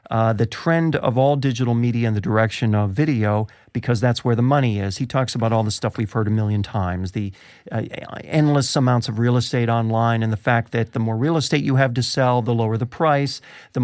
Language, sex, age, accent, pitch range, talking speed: English, male, 50-69, American, 115-140 Hz, 235 wpm